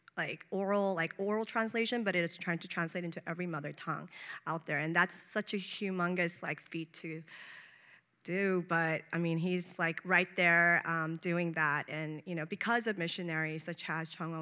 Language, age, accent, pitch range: English, 30-49, American, 165-205 Hz